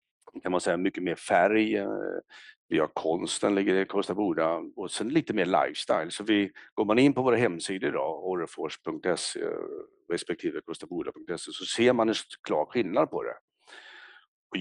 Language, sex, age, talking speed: Swedish, male, 60-79, 170 wpm